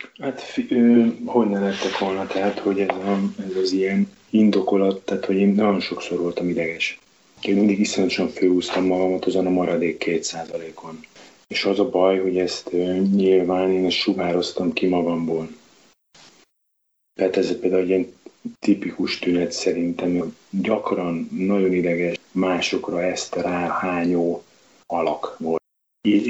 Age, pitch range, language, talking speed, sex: 30-49, 90-100 Hz, Hungarian, 135 wpm, male